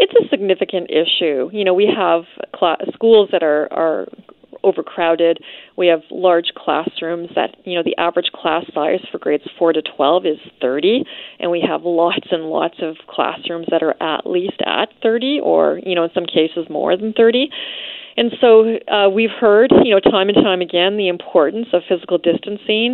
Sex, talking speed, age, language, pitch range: female, 185 wpm, 30-49, English, 170-205 Hz